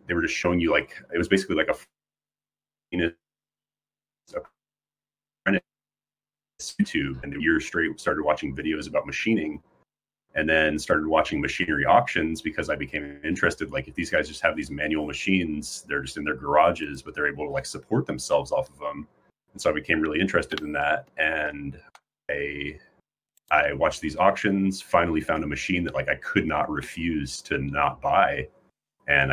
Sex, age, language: male, 30-49, English